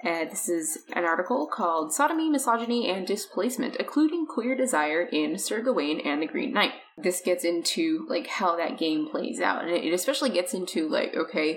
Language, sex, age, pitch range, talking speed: English, female, 20-39, 170-260 Hz, 185 wpm